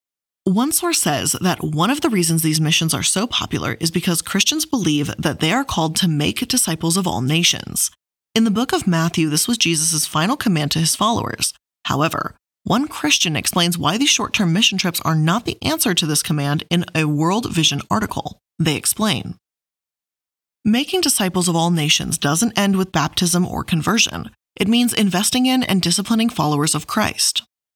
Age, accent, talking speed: 20-39, American, 180 wpm